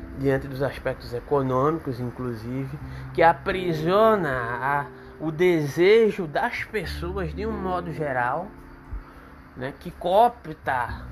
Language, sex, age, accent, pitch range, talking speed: Portuguese, male, 20-39, Brazilian, 135-170 Hz, 95 wpm